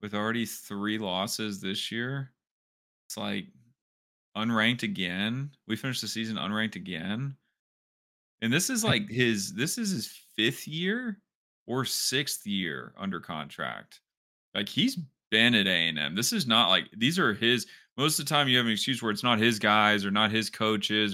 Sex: male